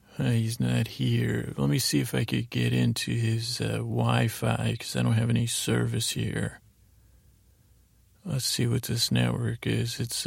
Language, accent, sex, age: English, American, male, 40-59